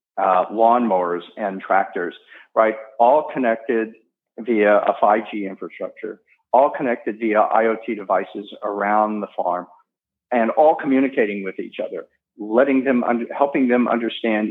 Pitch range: 105-115 Hz